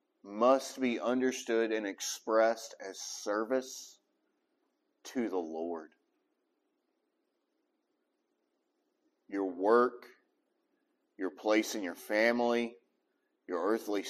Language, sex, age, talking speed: English, male, 40-59, 80 wpm